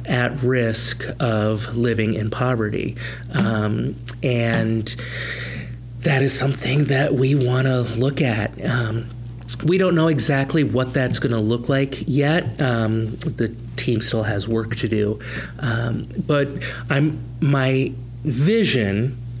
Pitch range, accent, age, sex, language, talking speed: 115-130 Hz, American, 30-49, male, English, 130 wpm